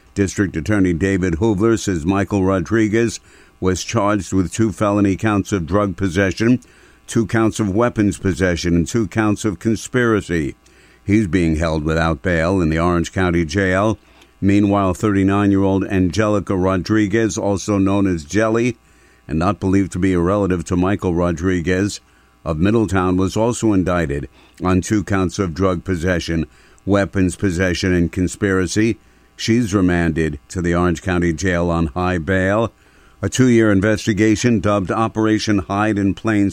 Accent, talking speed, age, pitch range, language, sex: American, 145 wpm, 60-79, 90-110 Hz, English, male